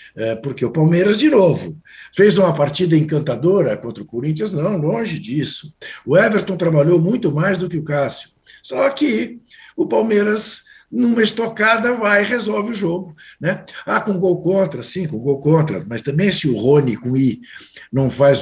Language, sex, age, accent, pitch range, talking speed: Portuguese, male, 60-79, Brazilian, 125-175 Hz, 175 wpm